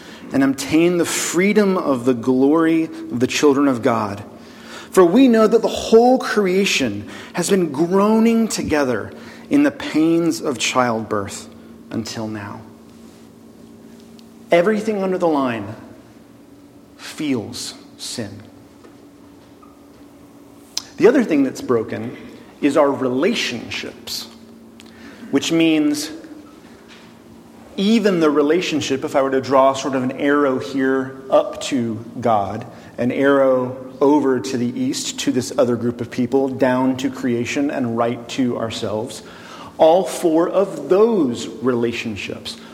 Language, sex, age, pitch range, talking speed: English, male, 40-59, 125-210 Hz, 120 wpm